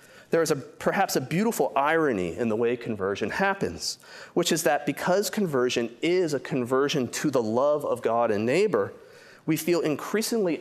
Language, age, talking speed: English, 30-49, 170 wpm